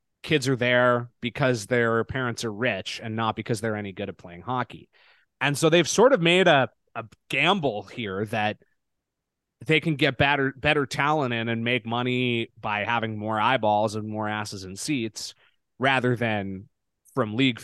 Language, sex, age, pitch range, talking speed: English, male, 20-39, 105-135 Hz, 175 wpm